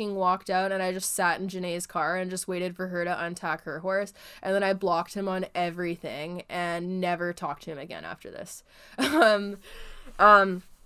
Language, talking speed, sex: English, 195 wpm, female